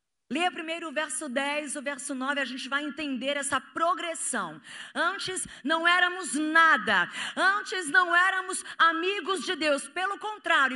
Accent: Brazilian